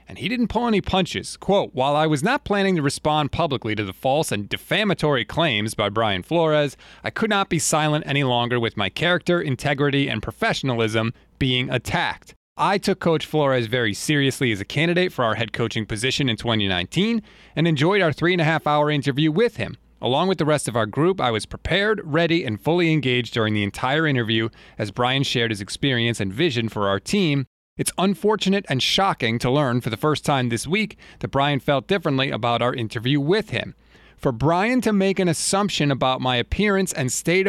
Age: 30-49